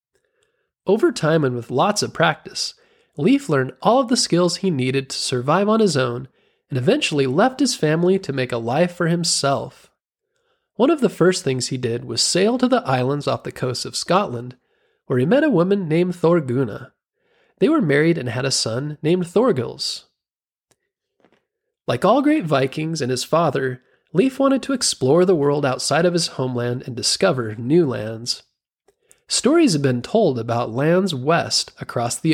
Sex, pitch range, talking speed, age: male, 130-200 Hz, 175 wpm, 30-49